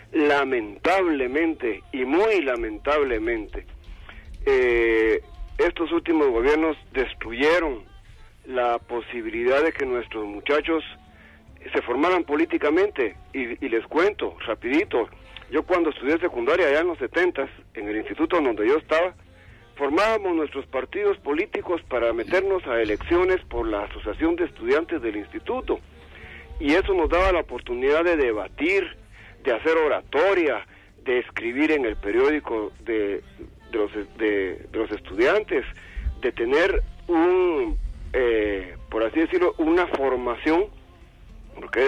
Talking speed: 120 wpm